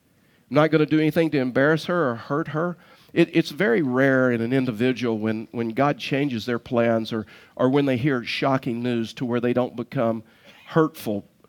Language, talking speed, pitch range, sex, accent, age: English, 195 wpm, 130-180 Hz, male, American, 50-69